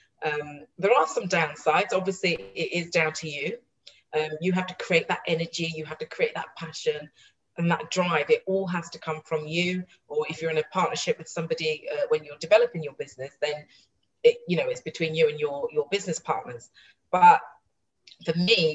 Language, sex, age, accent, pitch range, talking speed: English, female, 30-49, British, 160-205 Hz, 200 wpm